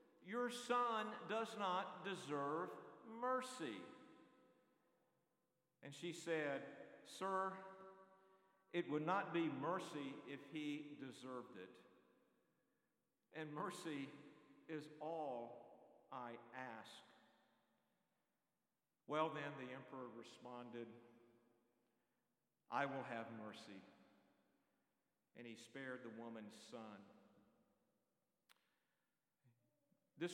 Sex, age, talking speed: male, 50-69, 80 wpm